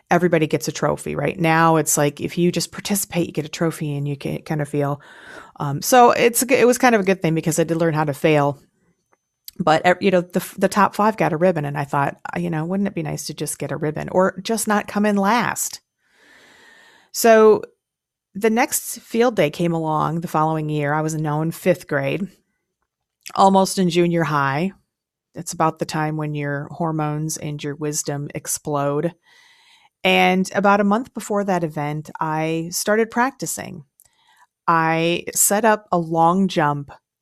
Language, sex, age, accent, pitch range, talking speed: English, female, 30-49, American, 150-190 Hz, 185 wpm